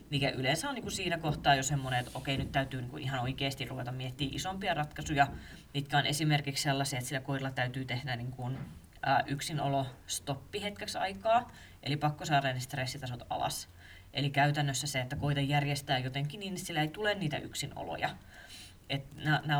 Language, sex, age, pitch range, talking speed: Finnish, female, 30-49, 135-155 Hz, 170 wpm